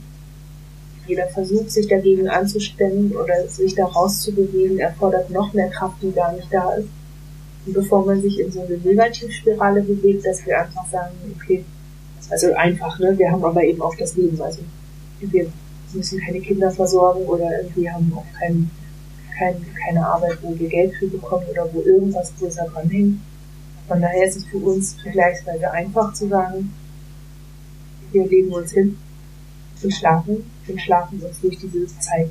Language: German